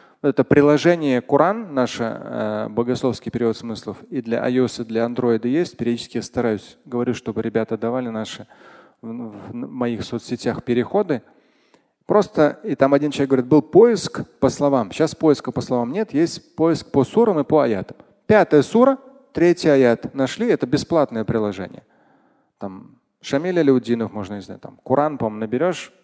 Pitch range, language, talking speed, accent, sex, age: 115-160 Hz, Russian, 155 wpm, native, male, 30-49